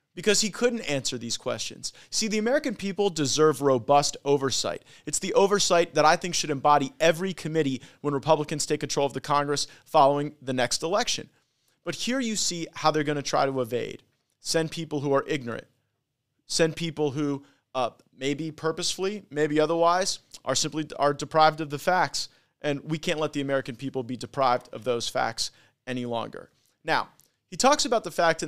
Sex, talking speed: male, 175 wpm